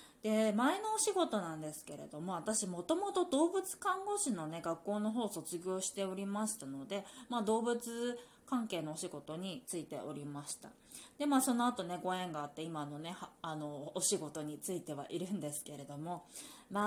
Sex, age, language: female, 20-39, Japanese